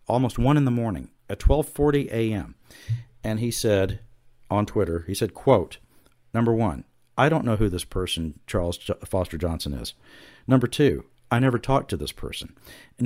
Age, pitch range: 50-69, 95-125 Hz